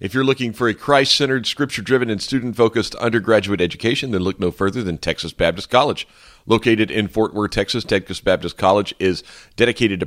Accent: American